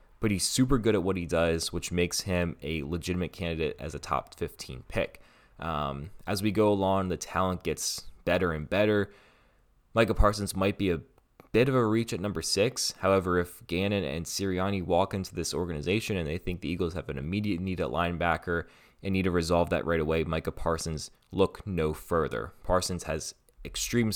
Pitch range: 85-105 Hz